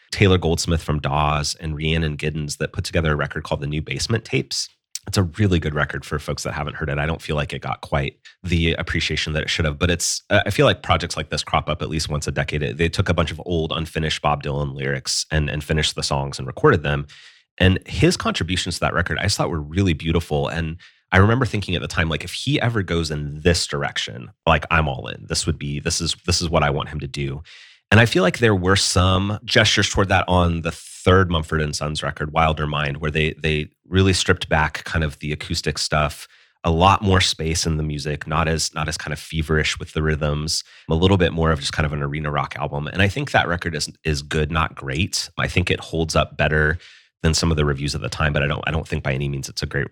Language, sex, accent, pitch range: English, male, American, 75-90 Hz